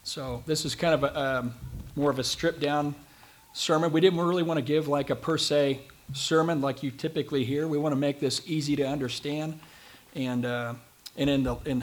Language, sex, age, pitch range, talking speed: English, male, 40-59, 120-150 Hz, 215 wpm